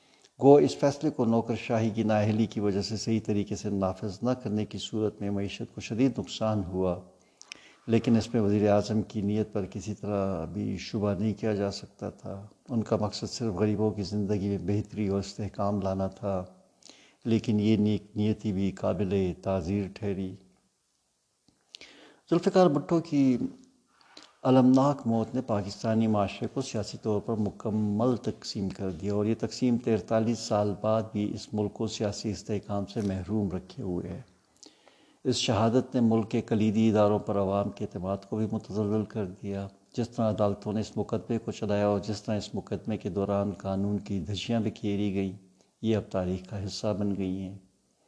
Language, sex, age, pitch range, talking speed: Urdu, male, 60-79, 100-110 Hz, 175 wpm